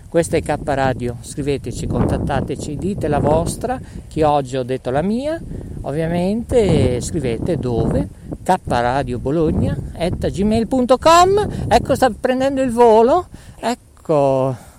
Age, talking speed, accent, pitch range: 50-69, 95 wpm, native, 130-220 Hz